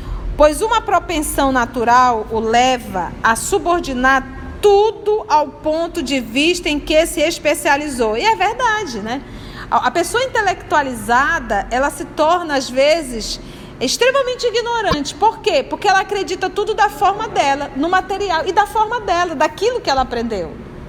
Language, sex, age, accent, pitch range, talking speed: Portuguese, female, 40-59, Brazilian, 290-415 Hz, 145 wpm